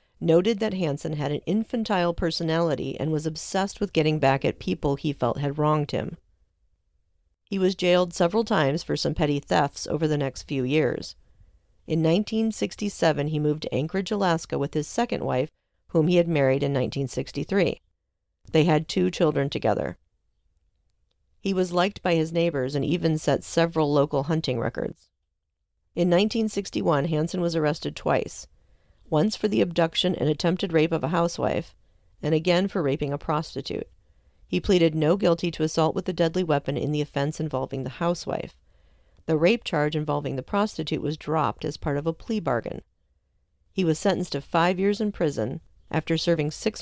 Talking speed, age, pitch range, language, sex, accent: 170 wpm, 40-59, 135-175 Hz, English, female, American